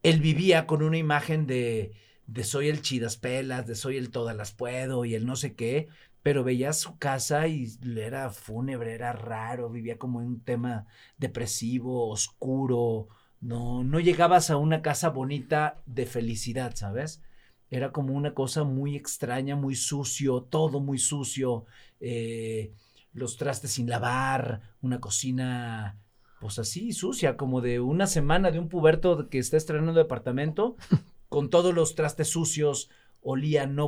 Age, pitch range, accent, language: 40-59, 115-145 Hz, Mexican, Spanish